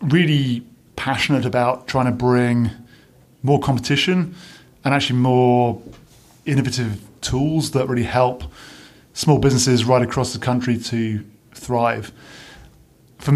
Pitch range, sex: 120-135 Hz, male